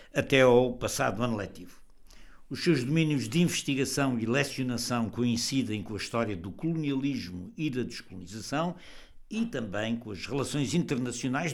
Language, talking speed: Portuguese, 140 wpm